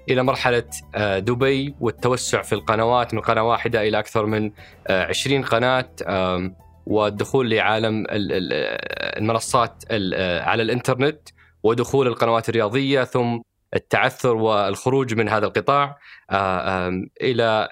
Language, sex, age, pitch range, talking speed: Arabic, male, 20-39, 110-130 Hz, 100 wpm